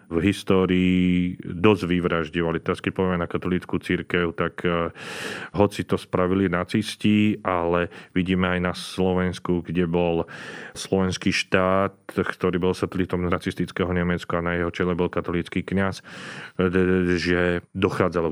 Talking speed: 125 wpm